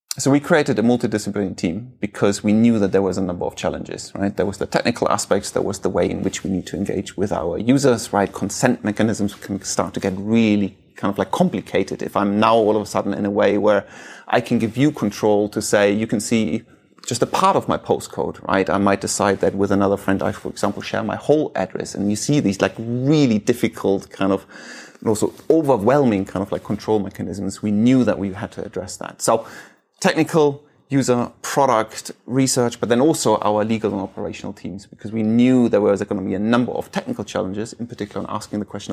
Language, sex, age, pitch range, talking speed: English, male, 30-49, 100-120 Hz, 225 wpm